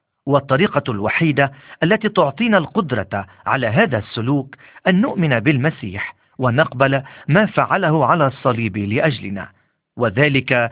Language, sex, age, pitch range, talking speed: Arabic, male, 50-69, 110-170 Hz, 100 wpm